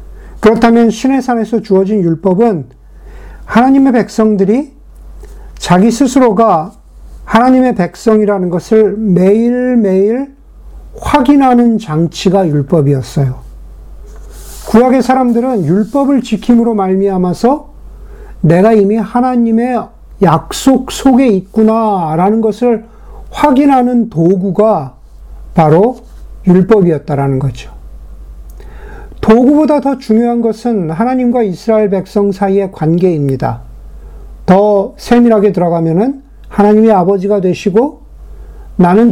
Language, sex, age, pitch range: Korean, male, 50-69, 165-235 Hz